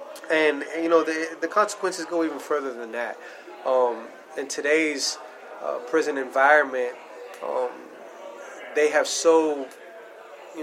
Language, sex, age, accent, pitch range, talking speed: English, male, 20-39, American, 130-165 Hz, 125 wpm